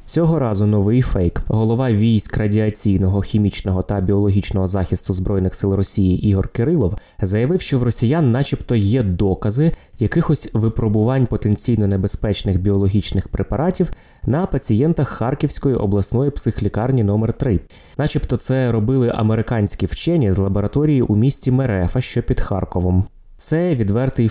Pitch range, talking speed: 100-125 Hz, 125 wpm